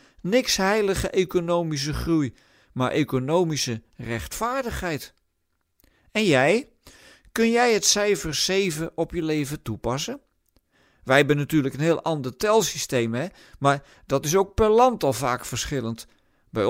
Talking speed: 130 wpm